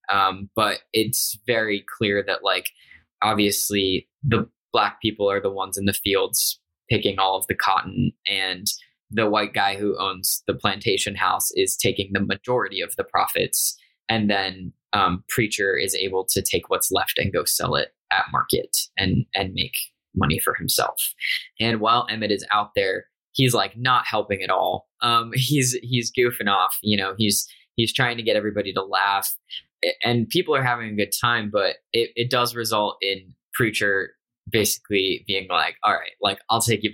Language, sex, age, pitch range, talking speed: English, male, 10-29, 100-125 Hz, 180 wpm